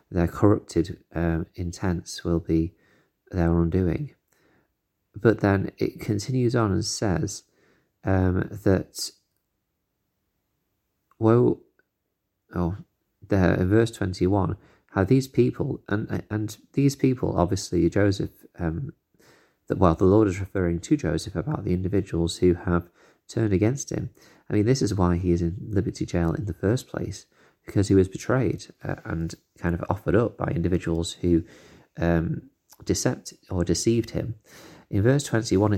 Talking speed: 140 wpm